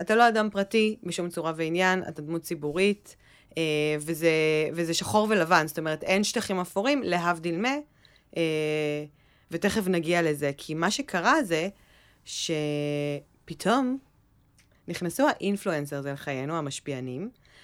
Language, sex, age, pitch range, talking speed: Hebrew, female, 20-39, 150-200 Hz, 115 wpm